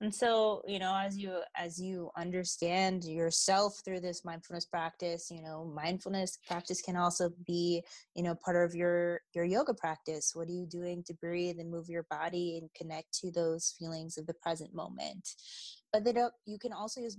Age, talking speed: 20-39, 185 wpm